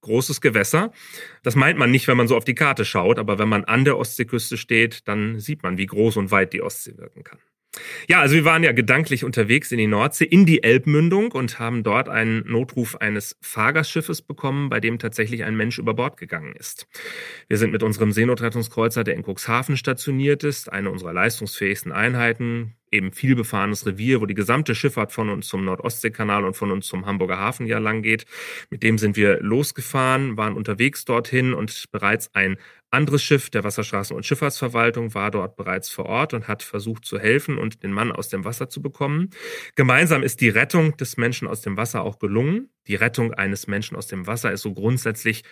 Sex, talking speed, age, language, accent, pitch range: male, 200 wpm, 30-49, German, German, 105-135 Hz